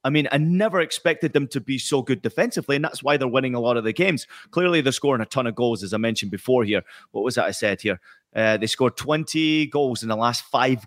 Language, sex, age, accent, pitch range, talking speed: English, male, 30-49, British, 115-145 Hz, 265 wpm